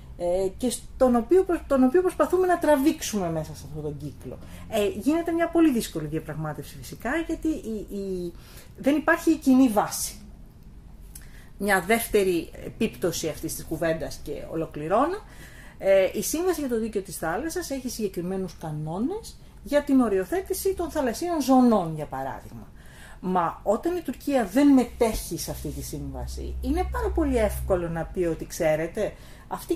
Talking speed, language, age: 135 wpm, Greek, 40-59